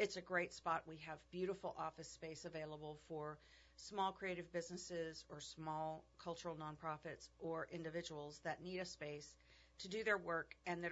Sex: female